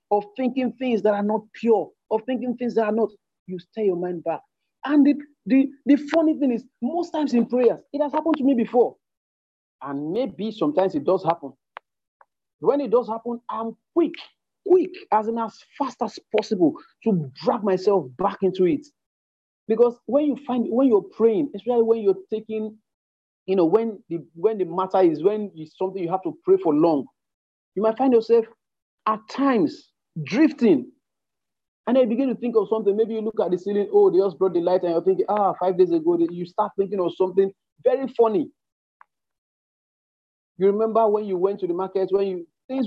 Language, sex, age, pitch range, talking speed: English, male, 40-59, 185-240 Hz, 195 wpm